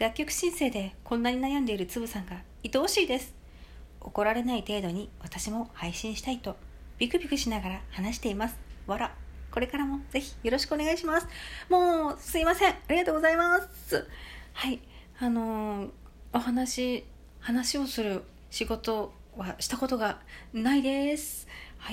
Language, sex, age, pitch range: Japanese, female, 40-59, 180-270 Hz